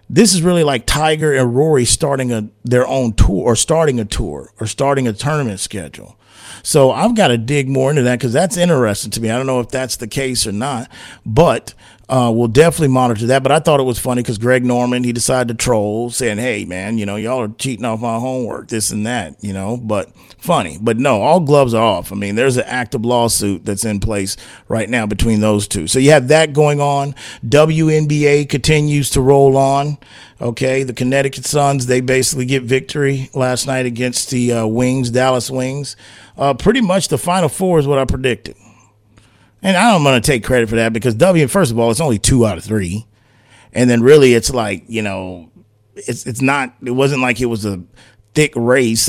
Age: 40-59